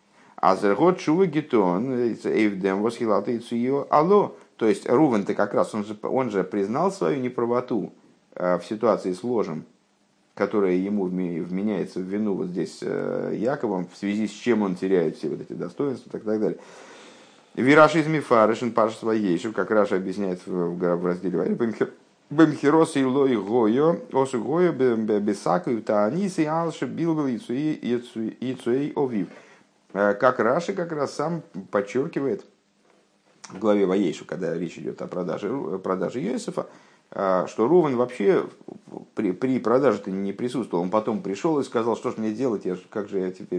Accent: native